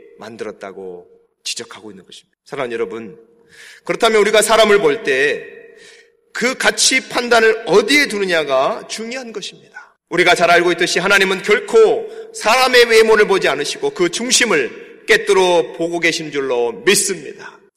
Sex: male